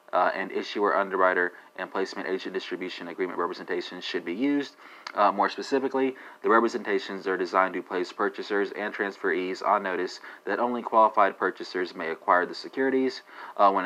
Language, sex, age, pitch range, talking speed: English, male, 30-49, 95-120 Hz, 160 wpm